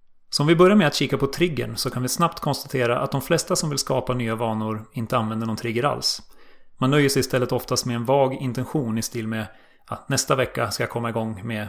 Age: 30-49